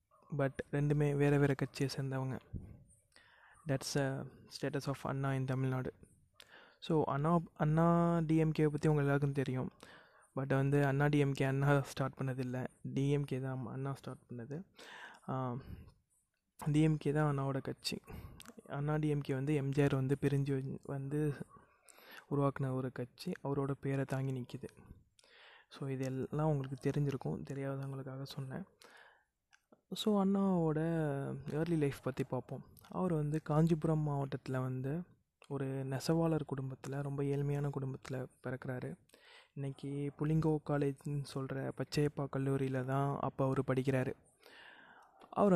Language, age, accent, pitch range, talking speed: Tamil, 20-39, native, 135-150 Hz, 115 wpm